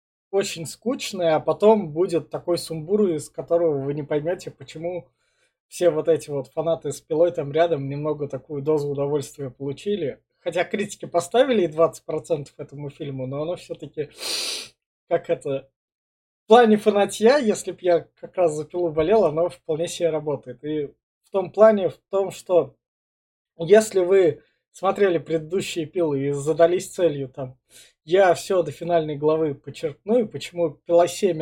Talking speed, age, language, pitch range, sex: 155 wpm, 20-39, Russian, 150-195 Hz, male